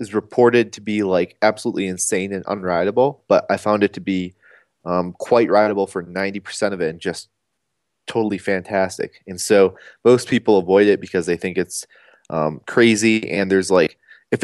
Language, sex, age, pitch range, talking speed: English, male, 20-39, 95-115 Hz, 175 wpm